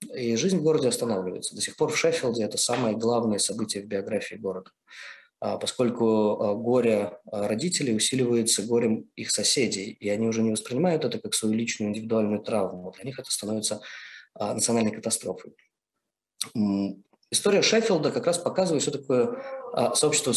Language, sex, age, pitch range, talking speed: Russian, male, 20-39, 115-165 Hz, 145 wpm